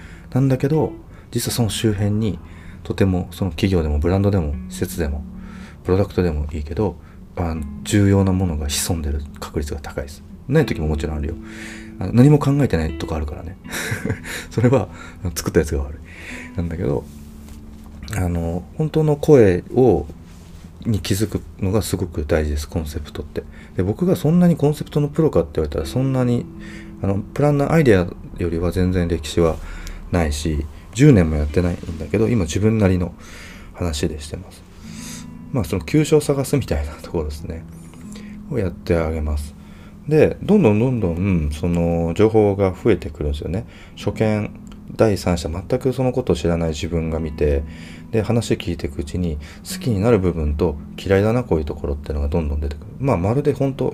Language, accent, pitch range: Japanese, native, 80-110 Hz